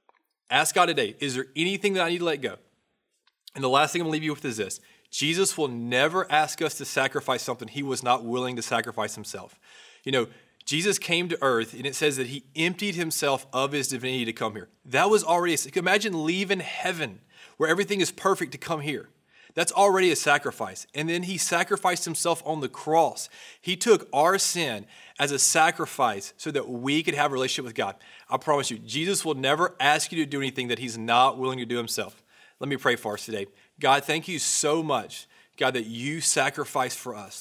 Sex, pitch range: male, 130-170 Hz